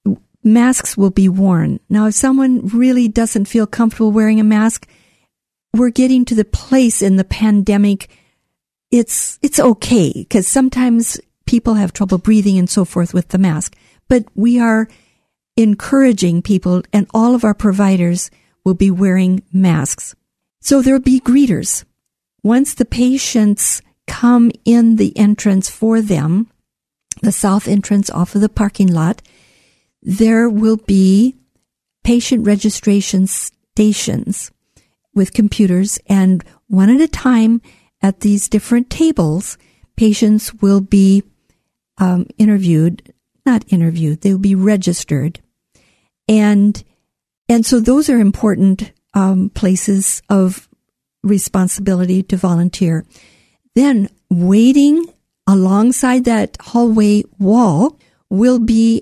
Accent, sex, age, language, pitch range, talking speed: American, female, 50-69, English, 195-235 Hz, 120 wpm